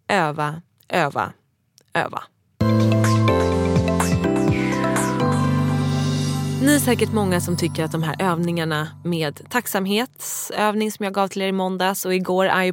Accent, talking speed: Swedish, 120 wpm